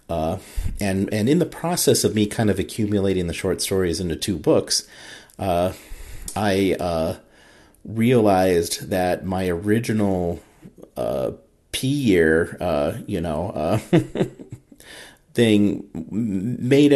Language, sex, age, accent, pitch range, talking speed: English, male, 40-59, American, 85-105 Hz, 115 wpm